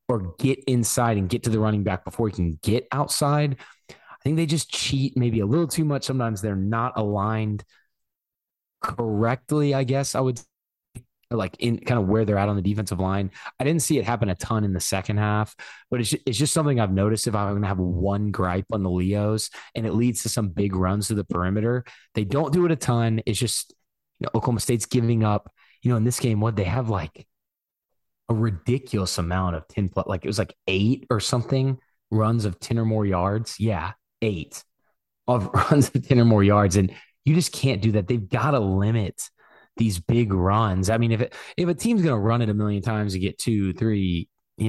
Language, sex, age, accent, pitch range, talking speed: English, male, 20-39, American, 95-125 Hz, 220 wpm